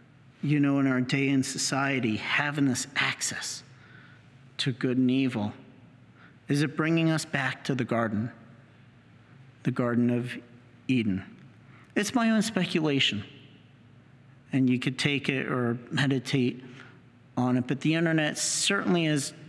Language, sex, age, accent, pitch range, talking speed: English, male, 50-69, American, 125-145 Hz, 135 wpm